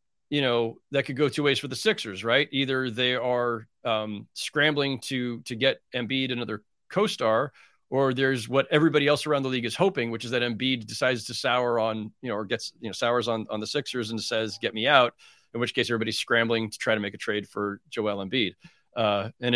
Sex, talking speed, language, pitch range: male, 225 wpm, English, 115-150 Hz